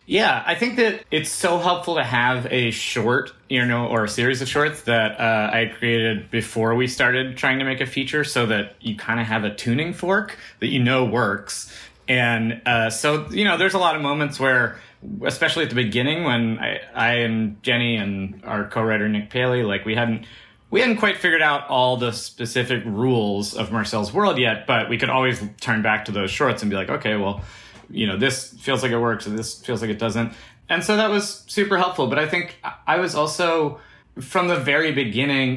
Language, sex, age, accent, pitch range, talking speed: English, male, 30-49, American, 105-135 Hz, 215 wpm